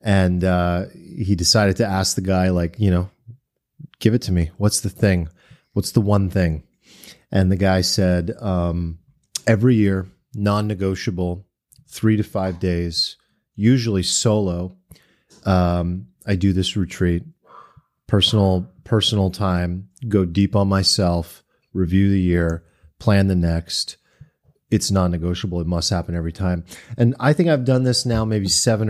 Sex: male